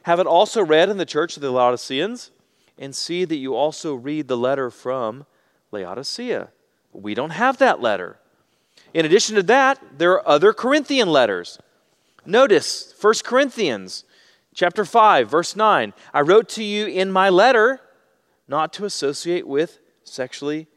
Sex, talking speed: male, 155 wpm